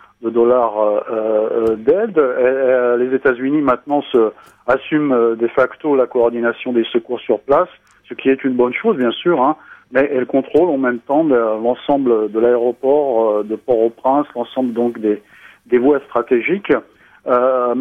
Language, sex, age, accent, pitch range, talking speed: French, male, 40-59, French, 115-140 Hz, 140 wpm